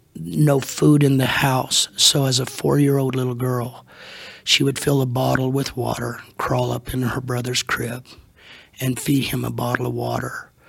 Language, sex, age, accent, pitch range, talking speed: English, male, 50-69, American, 120-140 Hz, 175 wpm